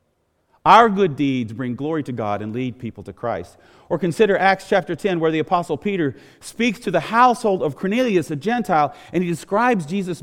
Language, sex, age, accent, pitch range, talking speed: English, male, 40-59, American, 125-190 Hz, 195 wpm